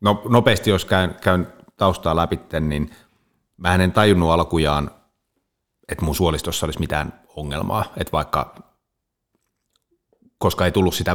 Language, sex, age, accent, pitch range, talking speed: Finnish, male, 30-49, native, 80-95 Hz, 130 wpm